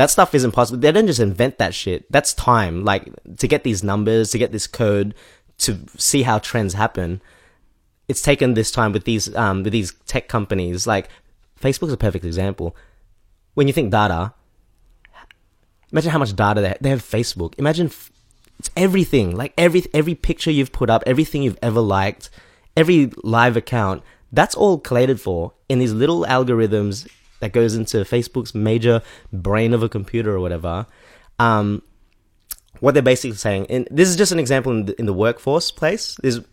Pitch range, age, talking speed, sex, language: 95-125 Hz, 20-39, 175 wpm, male, English